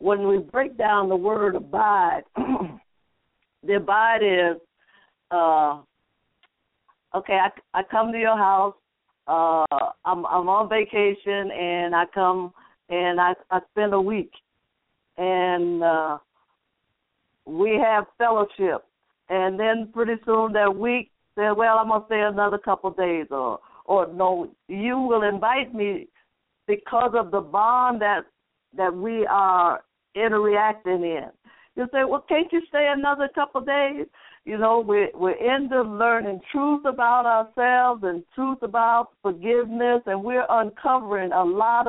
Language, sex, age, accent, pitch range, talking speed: English, female, 50-69, American, 190-240 Hz, 140 wpm